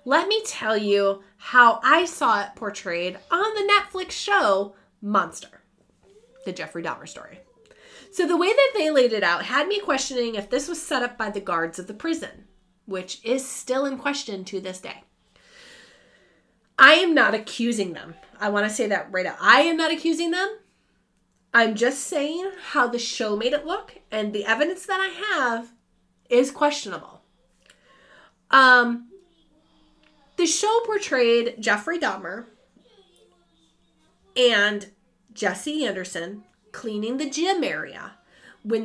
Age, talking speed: 30-49, 150 wpm